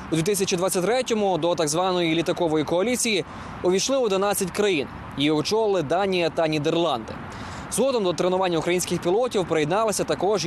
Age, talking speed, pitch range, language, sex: 20-39, 130 wpm, 160-210 Hz, Ukrainian, male